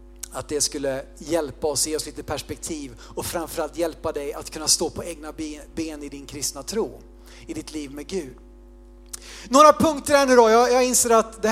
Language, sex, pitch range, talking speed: Swedish, male, 165-230 Hz, 205 wpm